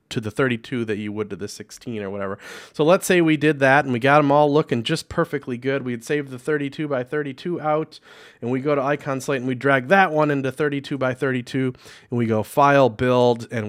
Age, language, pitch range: 30-49, English, 110-145 Hz